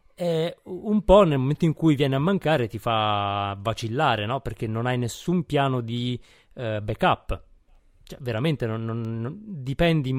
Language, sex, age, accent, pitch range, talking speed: Italian, male, 20-39, native, 115-150 Hz, 140 wpm